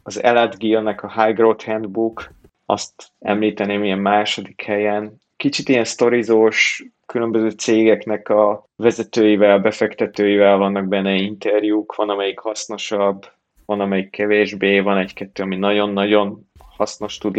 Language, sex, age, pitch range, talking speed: Hungarian, male, 20-39, 100-105 Hz, 115 wpm